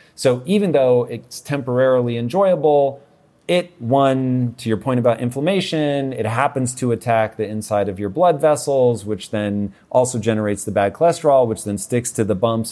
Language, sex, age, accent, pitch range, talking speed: English, male, 40-59, American, 105-145 Hz, 170 wpm